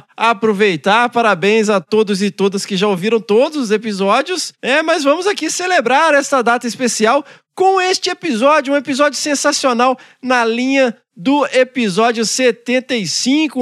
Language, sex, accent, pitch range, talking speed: Portuguese, male, Brazilian, 210-270 Hz, 135 wpm